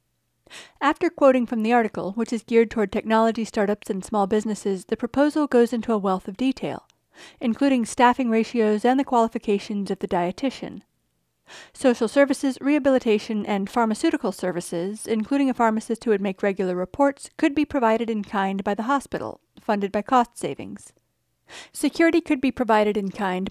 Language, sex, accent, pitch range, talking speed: English, female, American, 205-260 Hz, 160 wpm